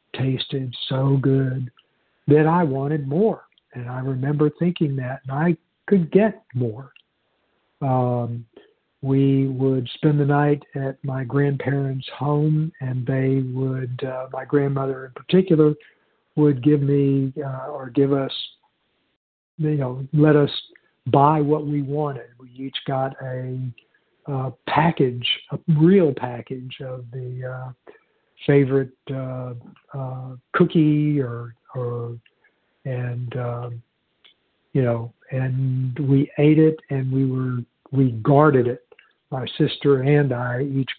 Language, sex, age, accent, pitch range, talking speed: English, male, 60-79, American, 130-145 Hz, 125 wpm